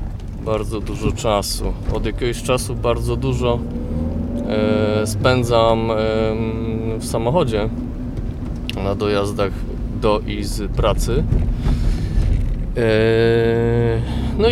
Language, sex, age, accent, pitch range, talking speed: Polish, male, 20-39, native, 105-125 Hz, 85 wpm